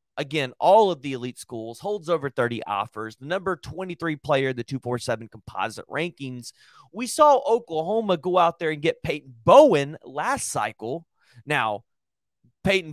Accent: American